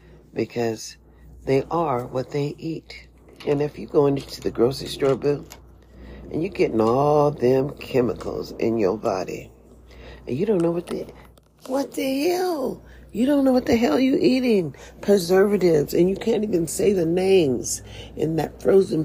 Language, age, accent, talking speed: English, 40-59, American, 165 wpm